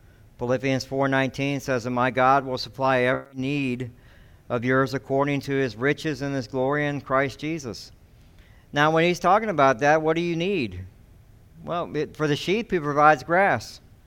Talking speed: 170 wpm